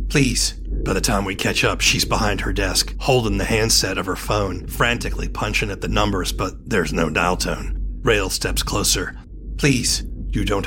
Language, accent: English, American